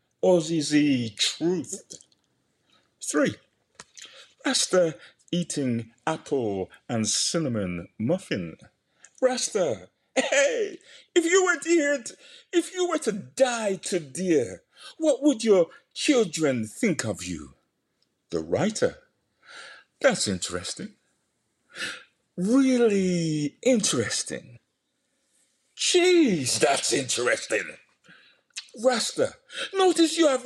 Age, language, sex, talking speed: 60-79, English, male, 85 wpm